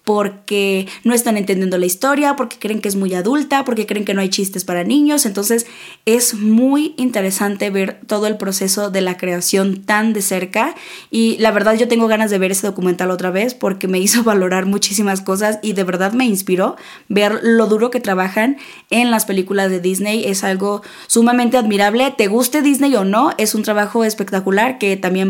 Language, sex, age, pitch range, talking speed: Spanish, female, 20-39, 195-255 Hz, 195 wpm